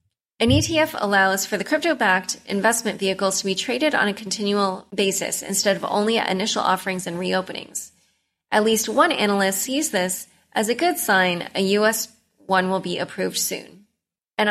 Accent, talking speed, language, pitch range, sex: American, 175 wpm, English, 190-230 Hz, female